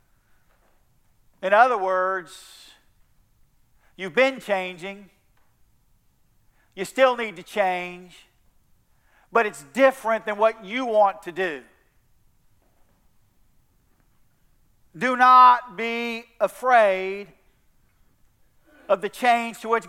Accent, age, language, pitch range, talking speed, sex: American, 50-69, English, 180-235 Hz, 90 wpm, male